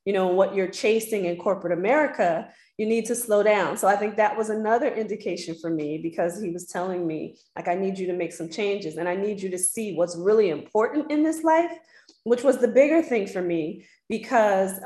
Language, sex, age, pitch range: English, female, 20-39, 185-230 Hz